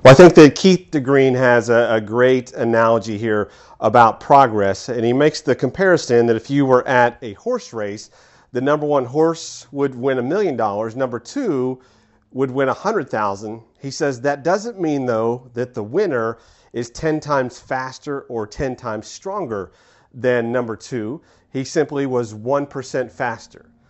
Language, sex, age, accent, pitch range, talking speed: English, male, 40-59, American, 120-155 Hz, 170 wpm